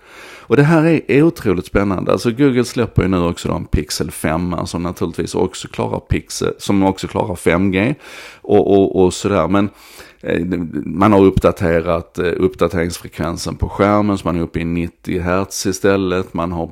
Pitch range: 85-100 Hz